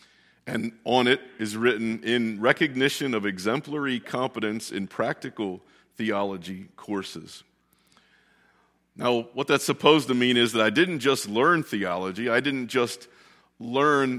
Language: English